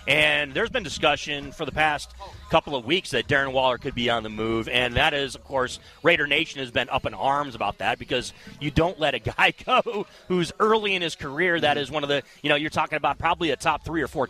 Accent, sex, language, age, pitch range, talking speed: American, male, English, 30-49, 130-160 Hz, 250 wpm